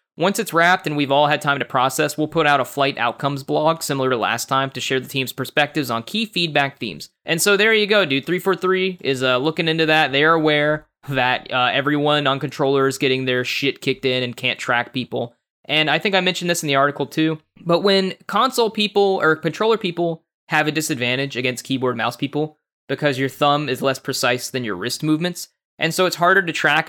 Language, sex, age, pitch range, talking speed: English, male, 20-39, 130-170 Hz, 225 wpm